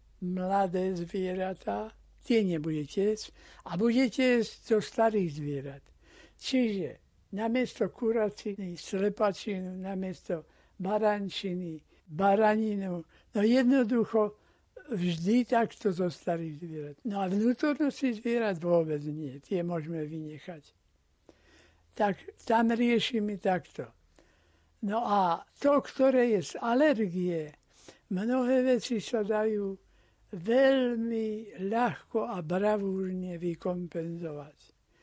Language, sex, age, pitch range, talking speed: Slovak, male, 60-79, 165-225 Hz, 95 wpm